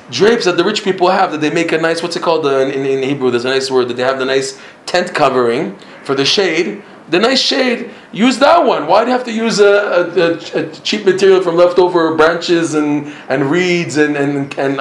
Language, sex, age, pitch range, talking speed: English, male, 20-39, 125-165 Hz, 235 wpm